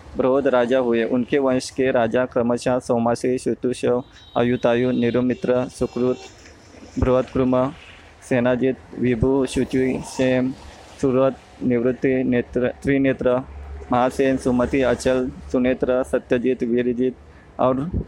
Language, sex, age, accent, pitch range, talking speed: Hindi, male, 20-39, native, 120-130 Hz, 90 wpm